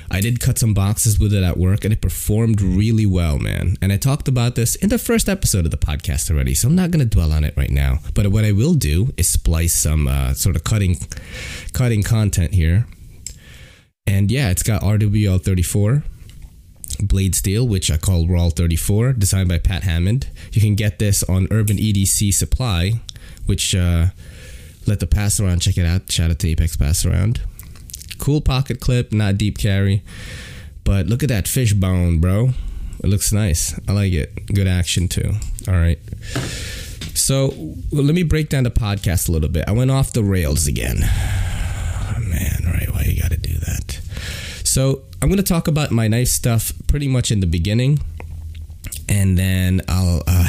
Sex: male